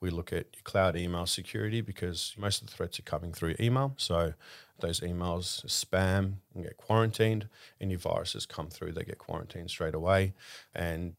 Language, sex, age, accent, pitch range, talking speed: English, male, 40-59, Australian, 85-105 Hz, 170 wpm